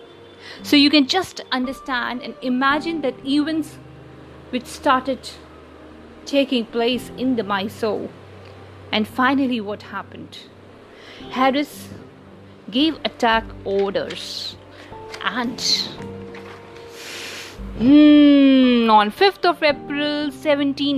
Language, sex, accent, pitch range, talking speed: English, female, Indian, 215-280 Hz, 90 wpm